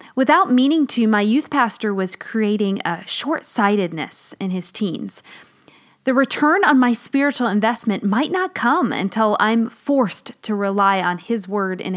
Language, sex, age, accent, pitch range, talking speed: English, female, 20-39, American, 195-260 Hz, 155 wpm